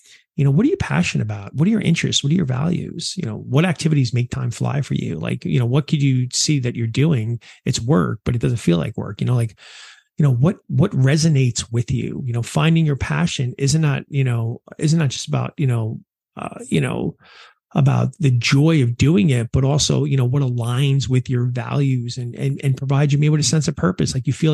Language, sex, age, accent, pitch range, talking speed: English, male, 30-49, American, 120-155 Hz, 240 wpm